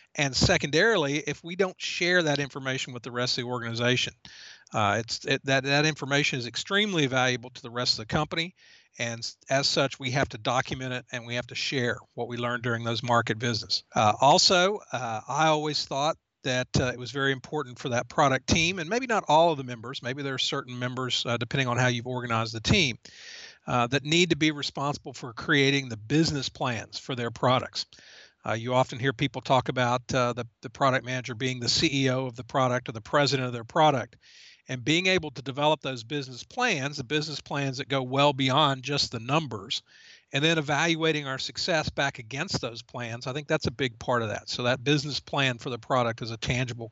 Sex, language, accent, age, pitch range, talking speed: male, English, American, 50-69, 125-145 Hz, 210 wpm